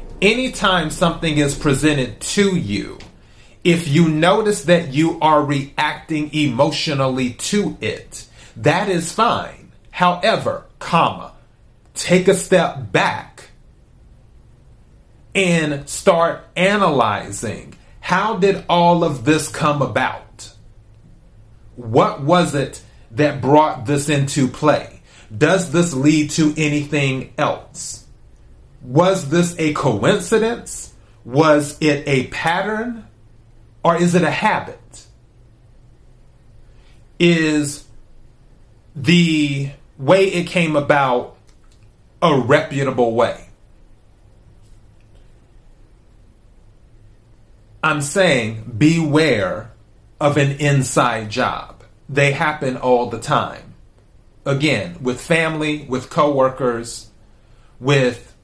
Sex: male